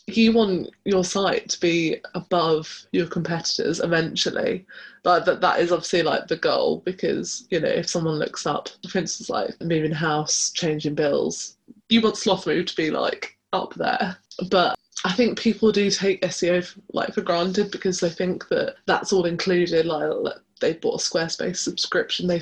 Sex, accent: female, British